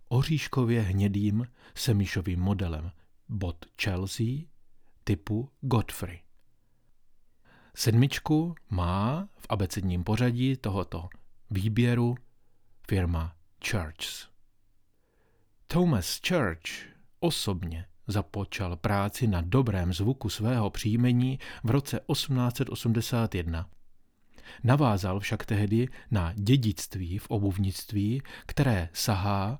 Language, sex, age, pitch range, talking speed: Czech, male, 40-59, 100-125 Hz, 80 wpm